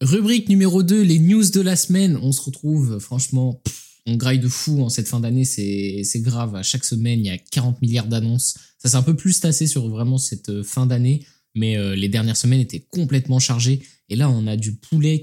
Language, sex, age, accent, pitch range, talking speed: French, male, 20-39, French, 115-145 Hz, 225 wpm